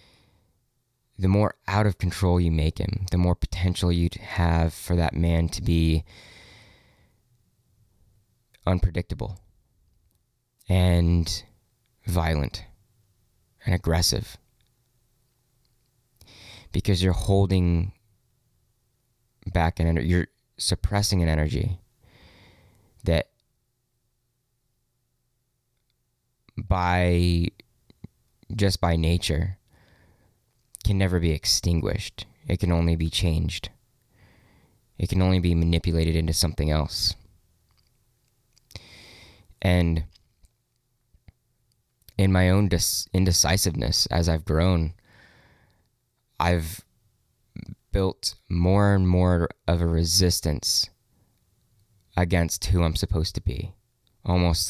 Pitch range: 85-115 Hz